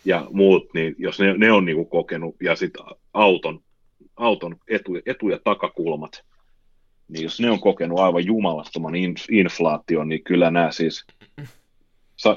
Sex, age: male, 30-49